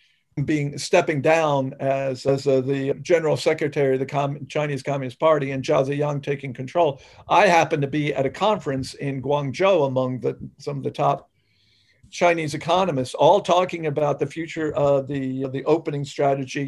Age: 50-69